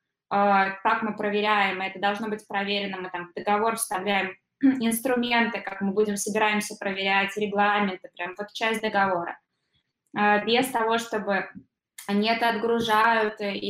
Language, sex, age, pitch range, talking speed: Russian, female, 20-39, 200-245 Hz, 125 wpm